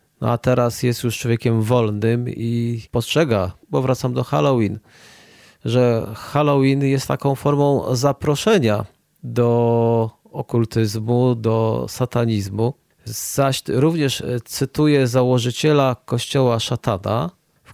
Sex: male